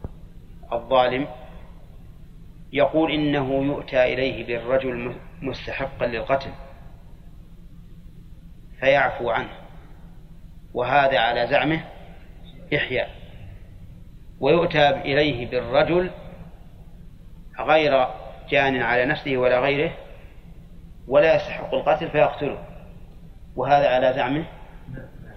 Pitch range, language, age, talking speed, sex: 125-155 Hz, Arabic, 40-59, 70 wpm, male